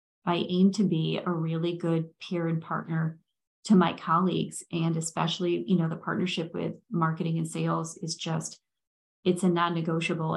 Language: English